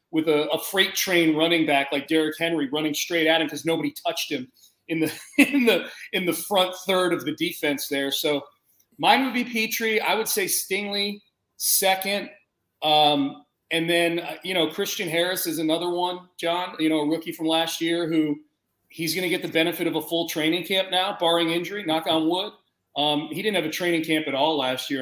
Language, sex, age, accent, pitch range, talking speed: English, male, 40-59, American, 150-185 Hz, 205 wpm